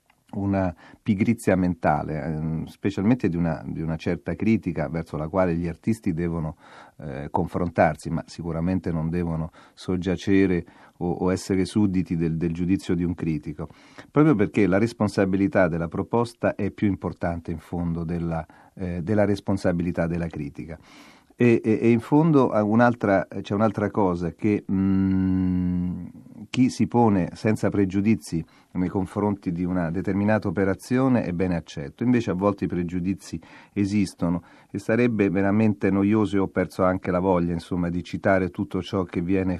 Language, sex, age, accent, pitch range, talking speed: Italian, male, 40-59, native, 85-100 Hz, 140 wpm